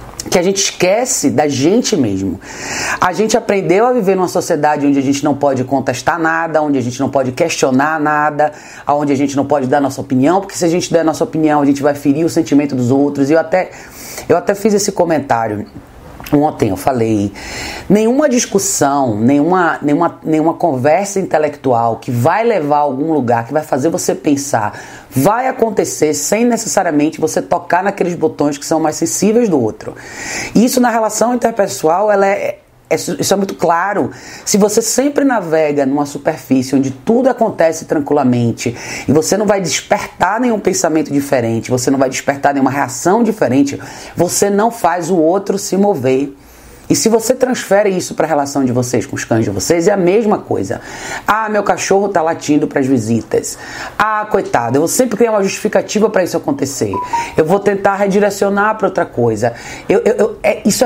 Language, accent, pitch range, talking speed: Portuguese, Brazilian, 140-205 Hz, 180 wpm